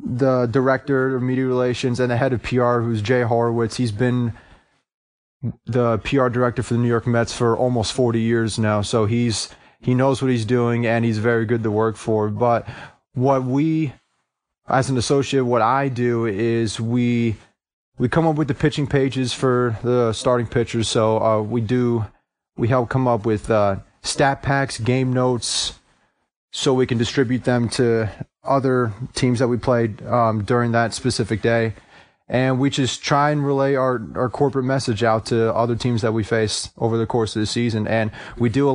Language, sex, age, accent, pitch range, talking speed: English, male, 30-49, American, 115-125 Hz, 185 wpm